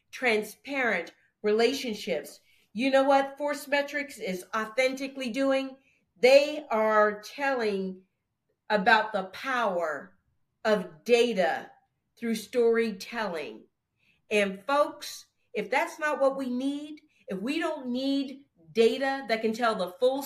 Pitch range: 220-275 Hz